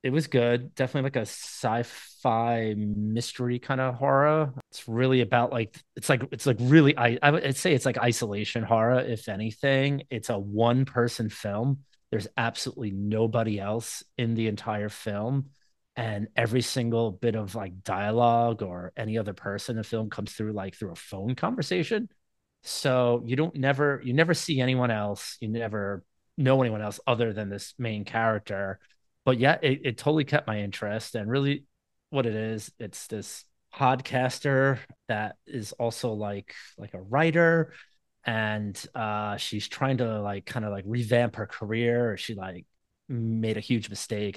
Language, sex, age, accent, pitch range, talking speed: English, male, 30-49, American, 105-130 Hz, 170 wpm